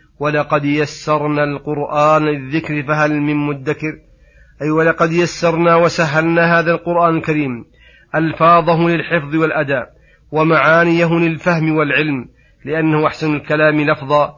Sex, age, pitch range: male, 40-59, 145-160 Hz